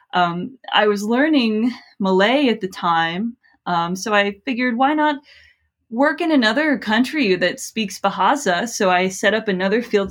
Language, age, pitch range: English, 20-39, 185-235 Hz